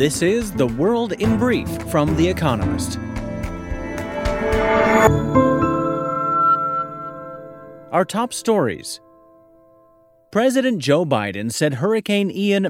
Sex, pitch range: male, 125-170 Hz